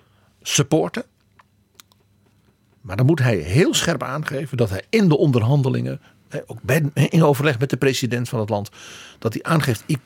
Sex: male